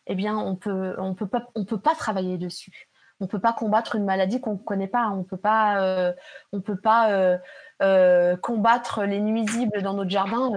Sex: female